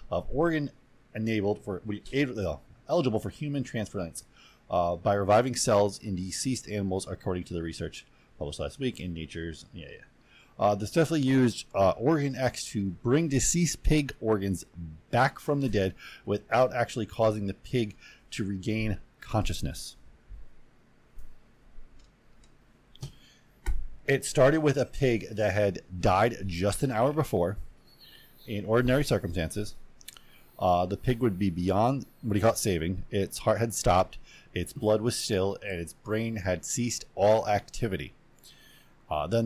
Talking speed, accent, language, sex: 140 wpm, American, English, male